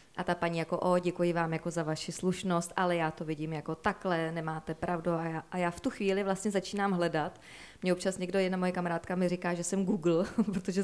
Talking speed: 220 wpm